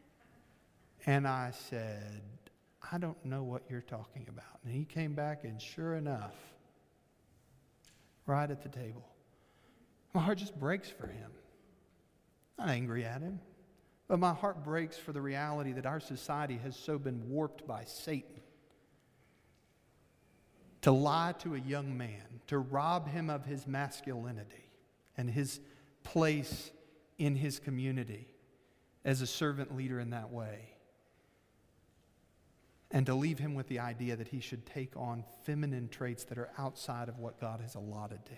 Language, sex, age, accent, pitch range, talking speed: English, male, 50-69, American, 120-145 Hz, 150 wpm